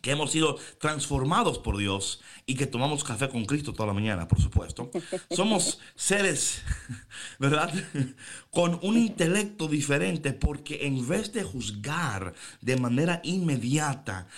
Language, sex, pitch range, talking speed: Spanish, male, 115-155 Hz, 135 wpm